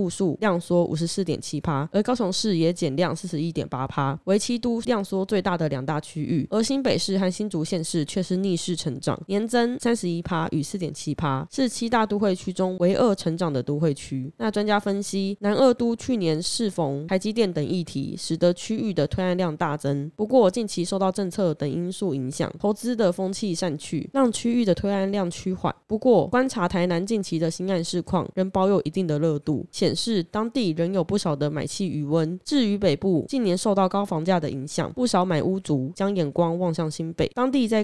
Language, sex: Chinese, female